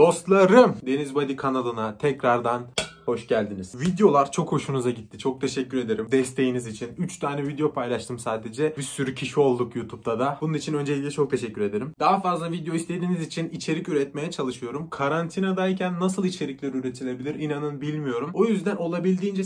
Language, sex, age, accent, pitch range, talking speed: Turkish, male, 30-49, native, 130-180 Hz, 155 wpm